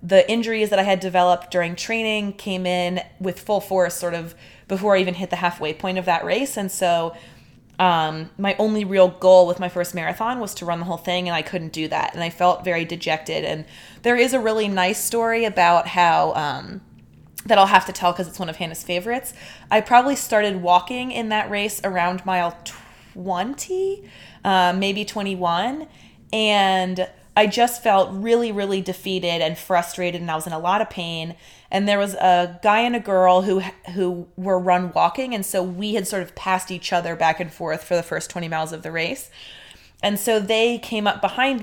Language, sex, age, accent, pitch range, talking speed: English, female, 20-39, American, 175-210 Hz, 205 wpm